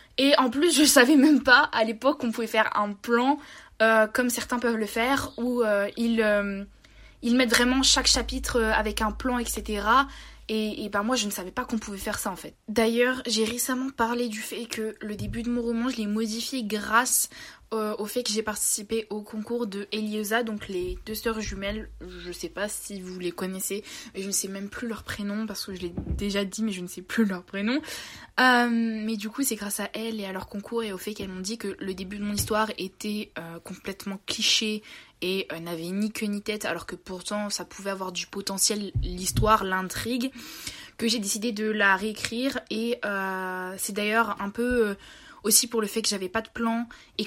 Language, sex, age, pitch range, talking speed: French, female, 20-39, 200-235 Hz, 220 wpm